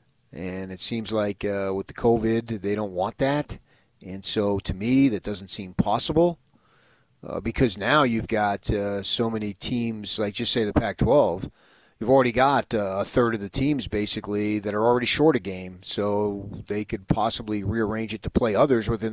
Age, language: 30-49, English